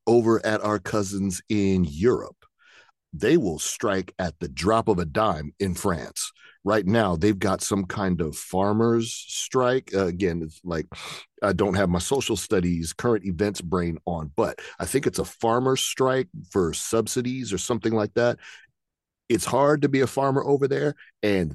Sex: male